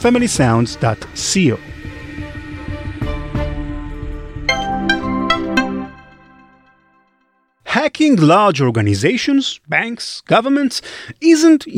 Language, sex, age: English, male, 30-49